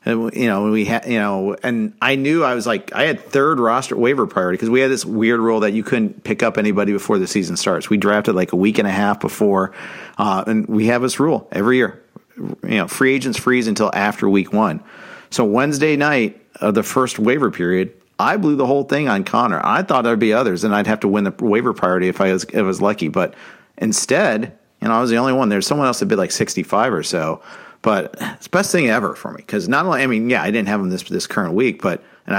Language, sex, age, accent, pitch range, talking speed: English, male, 50-69, American, 100-125 Hz, 255 wpm